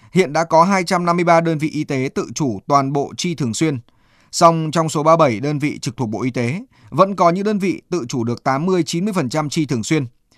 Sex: male